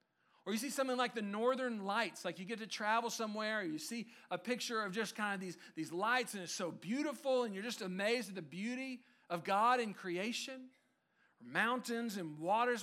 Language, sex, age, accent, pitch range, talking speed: English, male, 40-59, American, 180-235 Hz, 210 wpm